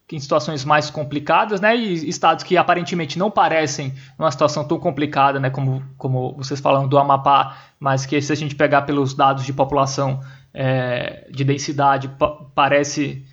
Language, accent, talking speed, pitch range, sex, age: Portuguese, Brazilian, 165 wpm, 140-195 Hz, male, 20-39